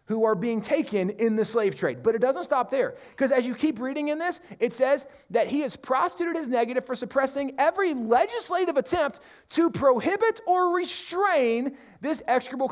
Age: 30-49